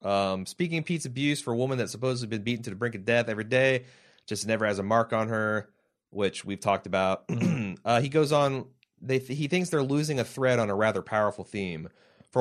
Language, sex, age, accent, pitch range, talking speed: English, male, 30-49, American, 105-130 Hz, 220 wpm